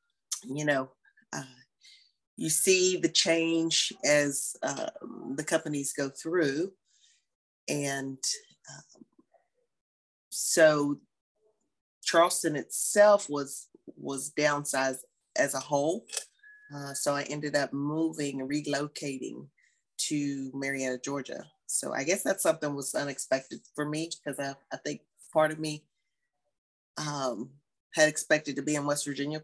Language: English